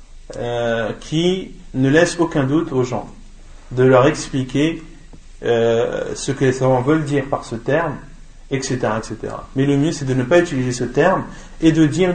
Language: French